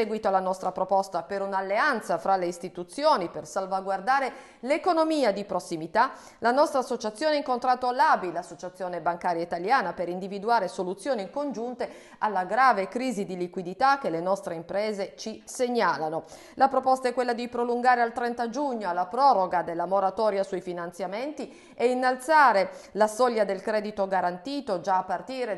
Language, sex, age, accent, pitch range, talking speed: Italian, female, 40-59, native, 185-255 Hz, 150 wpm